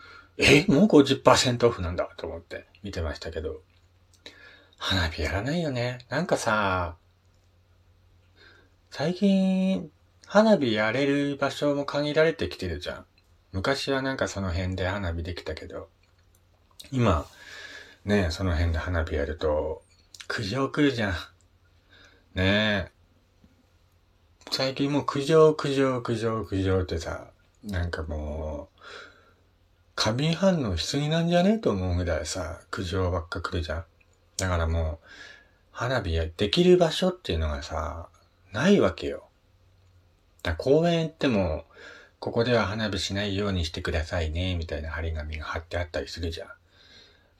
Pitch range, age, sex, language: 85-115 Hz, 40-59, male, Japanese